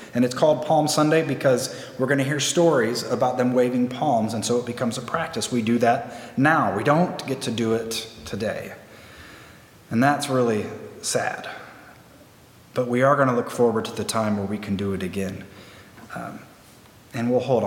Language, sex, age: English, male, 30-49